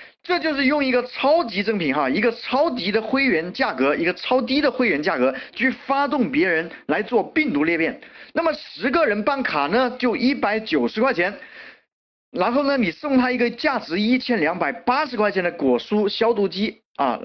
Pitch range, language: 215-280 Hz, Chinese